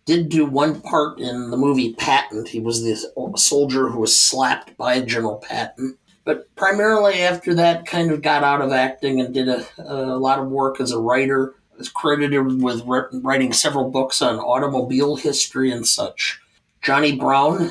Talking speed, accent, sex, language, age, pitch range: 175 wpm, American, male, English, 50-69, 125-150 Hz